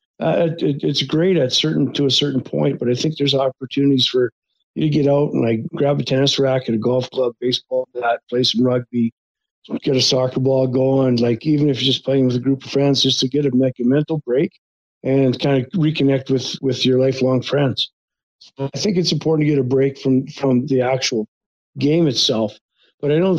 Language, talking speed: English, 215 wpm